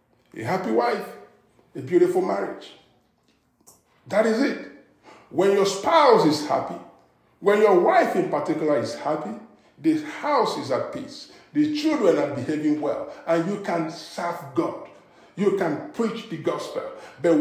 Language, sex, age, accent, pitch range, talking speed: English, male, 50-69, Nigerian, 170-260 Hz, 145 wpm